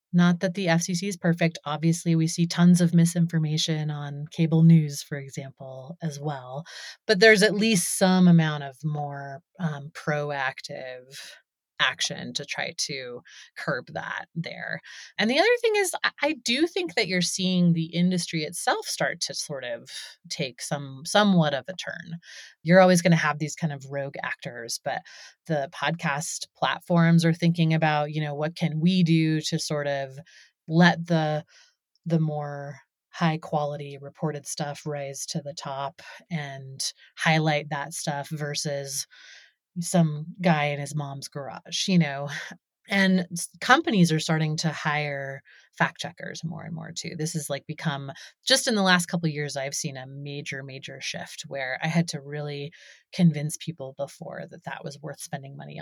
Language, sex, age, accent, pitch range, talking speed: English, female, 30-49, American, 145-175 Hz, 165 wpm